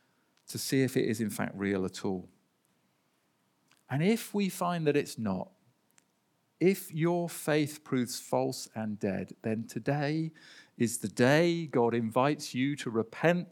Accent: British